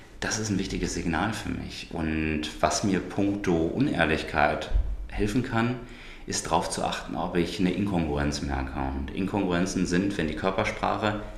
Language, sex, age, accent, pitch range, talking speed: German, male, 30-49, German, 85-100 Hz, 155 wpm